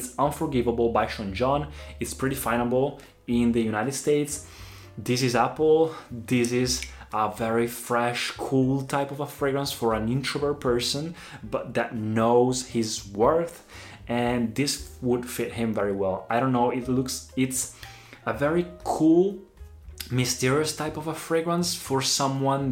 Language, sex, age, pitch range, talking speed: Italian, male, 20-39, 110-145 Hz, 150 wpm